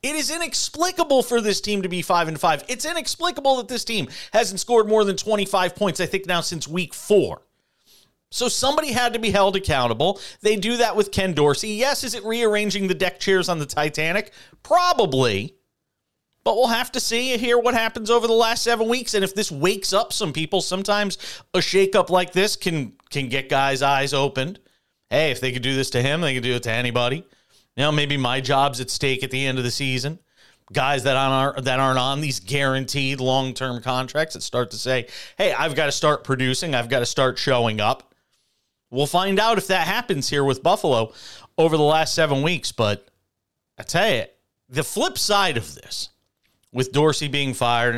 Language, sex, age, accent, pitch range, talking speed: English, male, 40-59, American, 135-215 Hz, 205 wpm